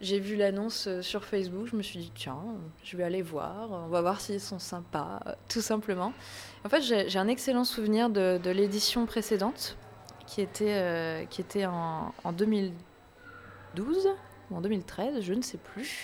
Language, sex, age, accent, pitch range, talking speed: French, female, 20-39, French, 175-215 Hz, 165 wpm